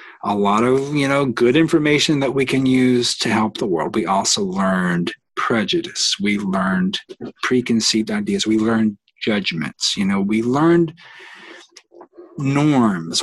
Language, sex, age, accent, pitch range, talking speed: English, male, 40-59, American, 120-160 Hz, 140 wpm